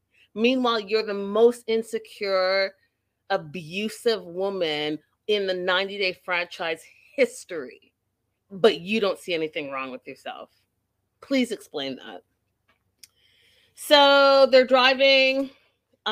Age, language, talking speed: 30-49, English, 100 wpm